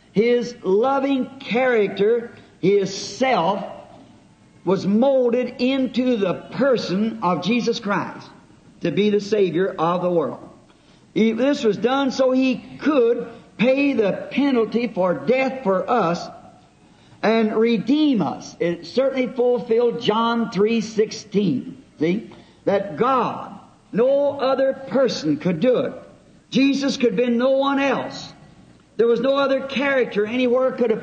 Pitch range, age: 205-255 Hz, 60-79